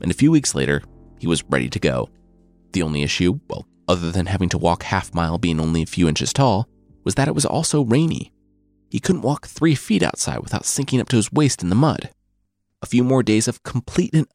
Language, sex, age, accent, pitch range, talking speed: English, male, 30-49, American, 85-130 Hz, 225 wpm